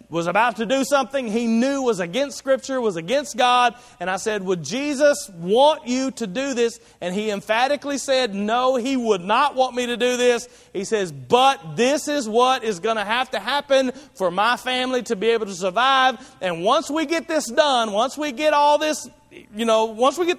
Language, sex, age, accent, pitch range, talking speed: English, male, 40-59, American, 200-275 Hz, 210 wpm